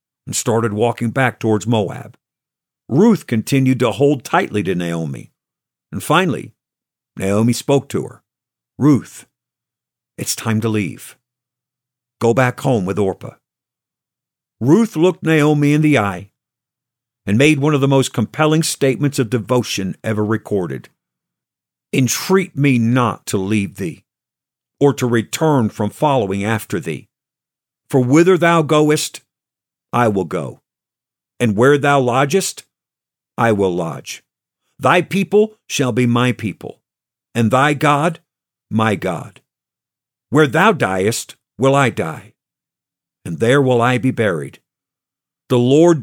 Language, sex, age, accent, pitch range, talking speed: English, male, 50-69, American, 115-145 Hz, 130 wpm